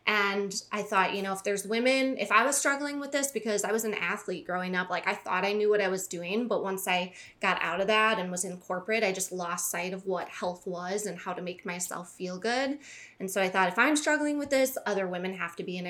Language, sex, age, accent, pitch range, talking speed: English, female, 20-39, American, 185-225 Hz, 270 wpm